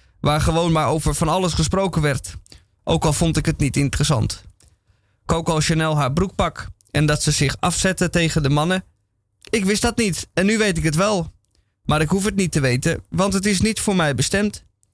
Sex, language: male, Dutch